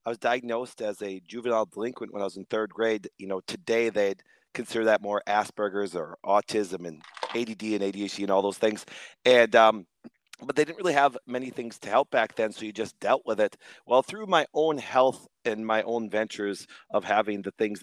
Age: 30-49